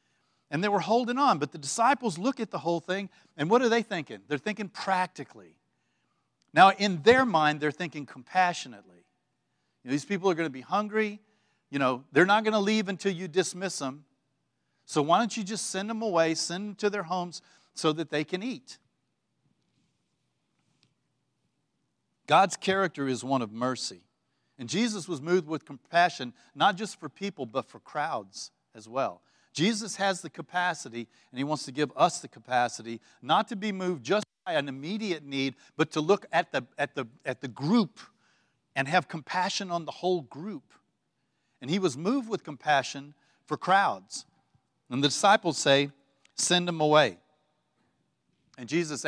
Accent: American